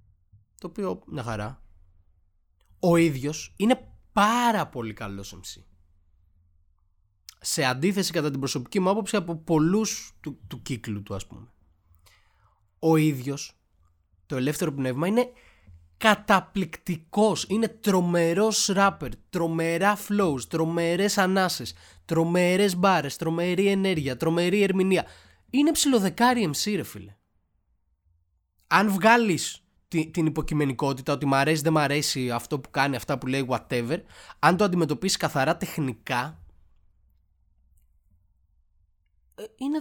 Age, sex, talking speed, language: 20-39, male, 110 wpm, Greek